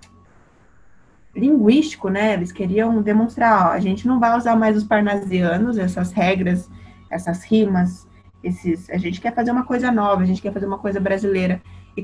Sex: female